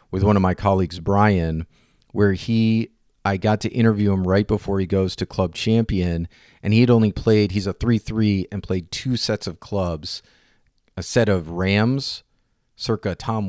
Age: 40-59